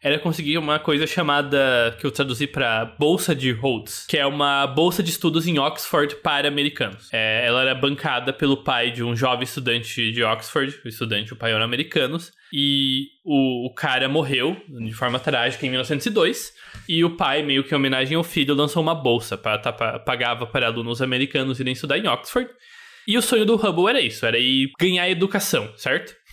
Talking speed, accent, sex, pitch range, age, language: 185 wpm, Brazilian, male, 130-175 Hz, 20-39, Portuguese